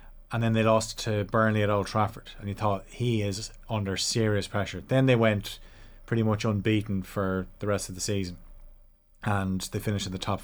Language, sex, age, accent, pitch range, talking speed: English, male, 30-49, Irish, 100-115 Hz, 200 wpm